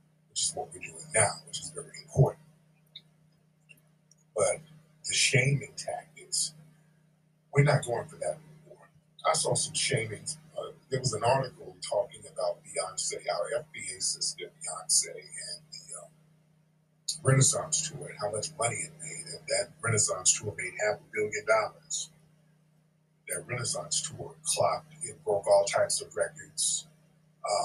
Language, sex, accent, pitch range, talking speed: English, male, American, 140-160 Hz, 140 wpm